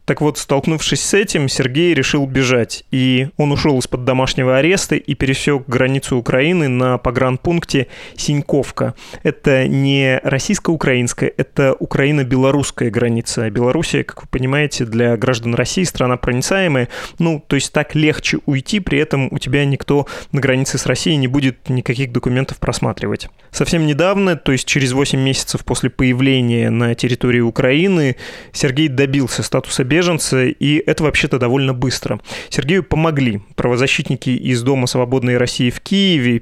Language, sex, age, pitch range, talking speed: Russian, male, 20-39, 125-150 Hz, 145 wpm